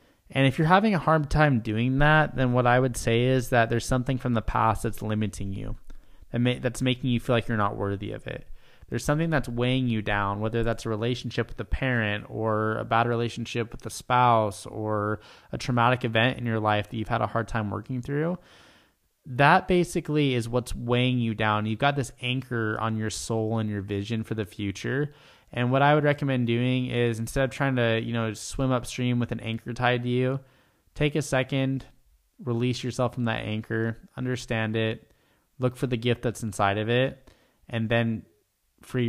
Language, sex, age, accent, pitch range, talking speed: English, male, 20-39, American, 110-125 Hz, 205 wpm